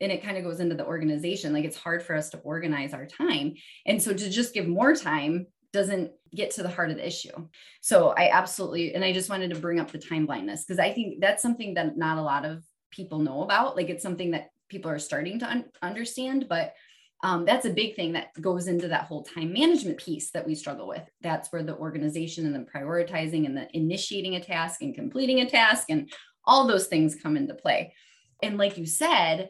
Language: English